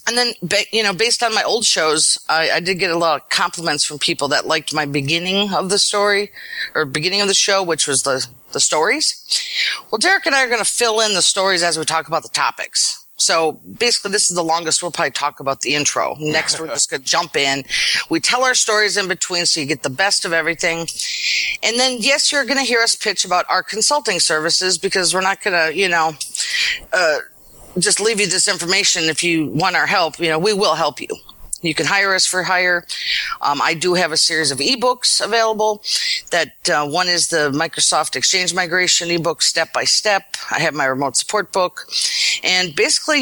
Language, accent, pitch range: English, American, 160-210 Hz